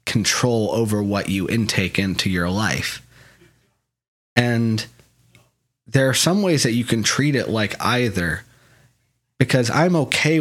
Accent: American